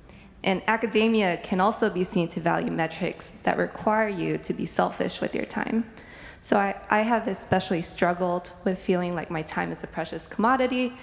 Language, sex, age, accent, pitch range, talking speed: English, female, 20-39, American, 175-230 Hz, 180 wpm